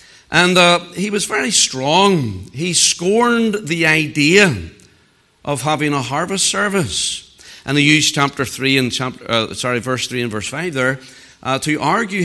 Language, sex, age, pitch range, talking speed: English, male, 60-79, 145-195 Hz, 160 wpm